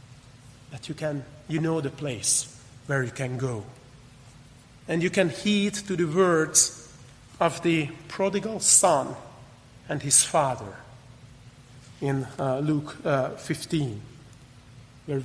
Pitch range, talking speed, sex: 125-185 Hz, 120 wpm, male